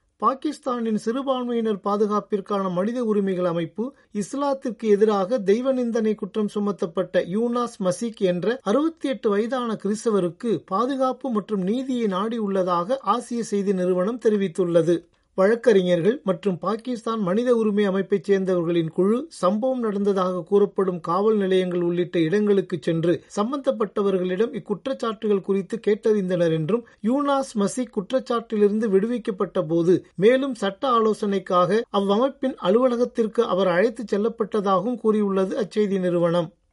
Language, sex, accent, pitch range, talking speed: Tamil, male, native, 195-235 Hz, 100 wpm